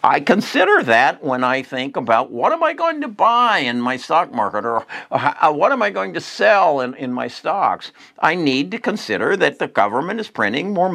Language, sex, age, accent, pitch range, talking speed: English, male, 60-79, American, 110-175 Hz, 210 wpm